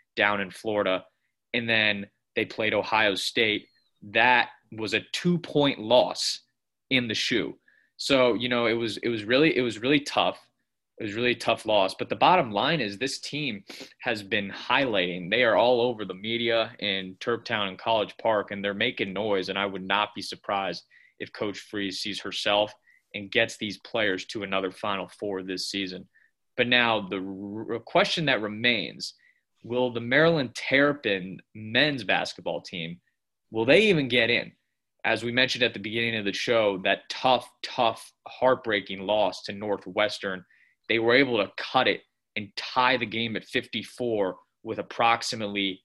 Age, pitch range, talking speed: 20-39, 100-120 Hz, 170 wpm